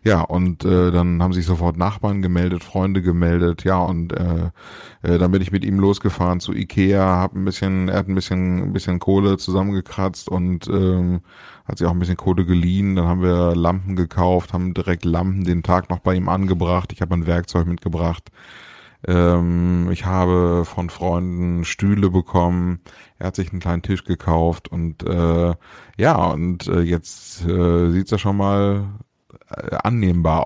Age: 30-49